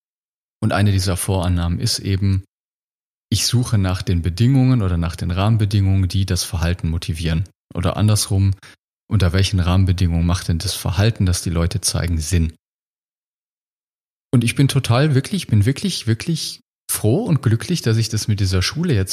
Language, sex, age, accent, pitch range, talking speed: German, male, 30-49, German, 95-120 Hz, 160 wpm